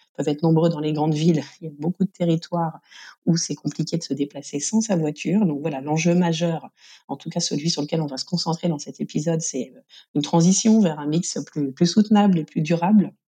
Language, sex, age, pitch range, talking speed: French, female, 40-59, 160-200 Hz, 230 wpm